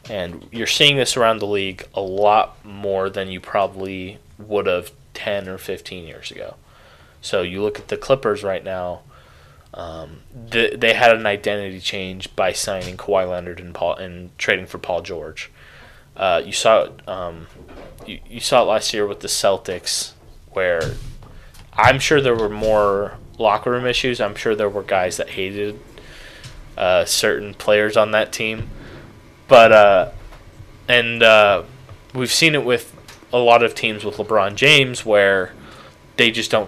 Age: 20-39